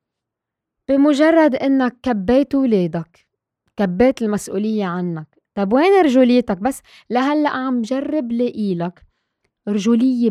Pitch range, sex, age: 190-245 Hz, female, 20-39